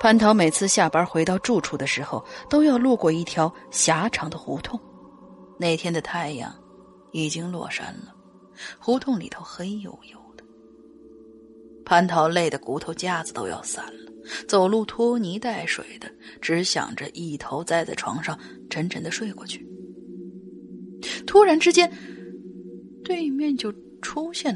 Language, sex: Chinese, female